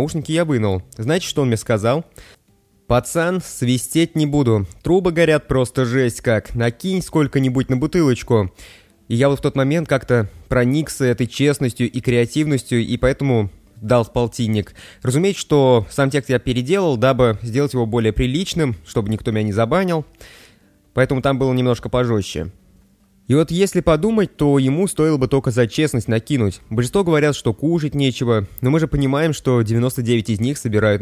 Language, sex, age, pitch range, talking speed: Russian, male, 20-39, 115-145 Hz, 165 wpm